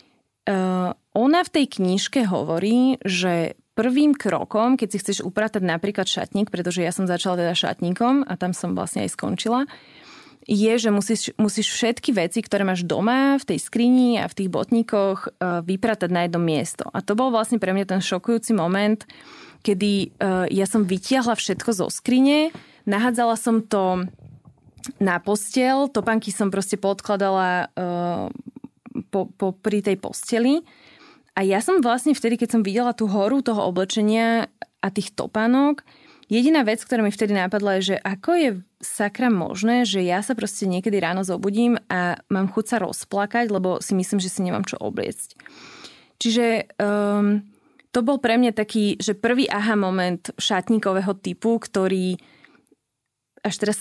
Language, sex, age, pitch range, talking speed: Slovak, female, 20-39, 185-235 Hz, 160 wpm